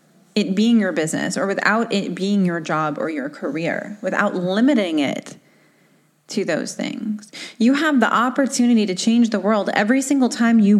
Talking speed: 170 wpm